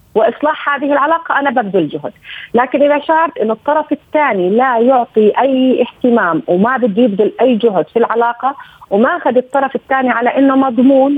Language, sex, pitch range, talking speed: Arabic, female, 220-275 Hz, 160 wpm